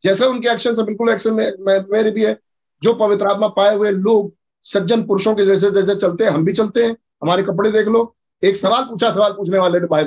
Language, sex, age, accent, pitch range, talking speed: Hindi, male, 50-69, native, 150-215 Hz, 225 wpm